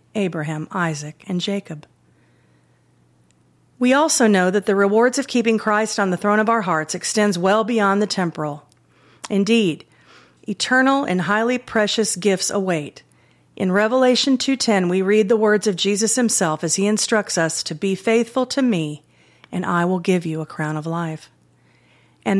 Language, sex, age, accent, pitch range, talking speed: English, female, 40-59, American, 165-225 Hz, 160 wpm